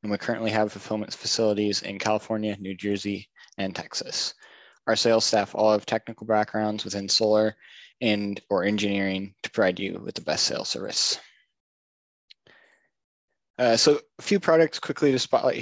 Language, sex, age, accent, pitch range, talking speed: English, male, 20-39, American, 100-115 Hz, 155 wpm